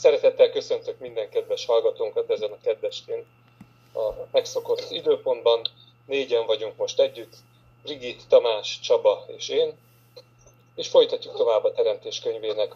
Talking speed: 120 wpm